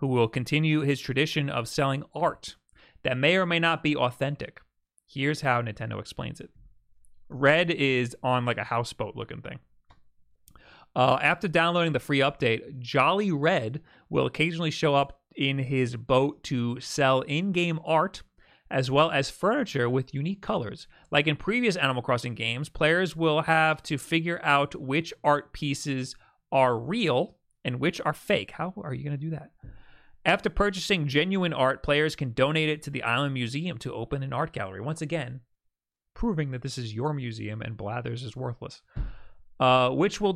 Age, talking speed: 30-49, 170 wpm